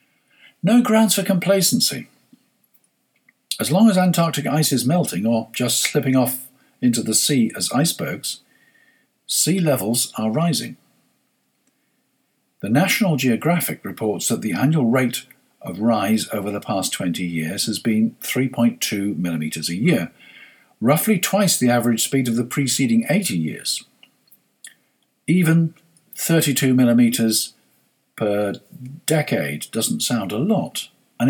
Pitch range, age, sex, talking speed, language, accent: 110-175 Hz, 50-69, male, 125 wpm, English, British